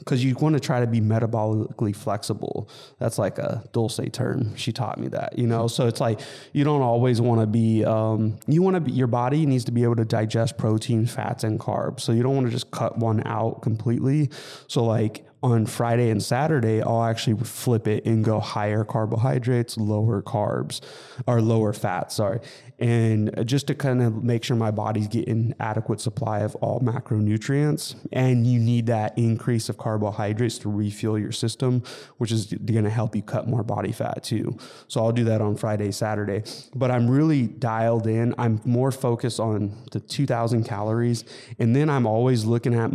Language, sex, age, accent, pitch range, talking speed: English, male, 20-39, American, 110-125 Hz, 190 wpm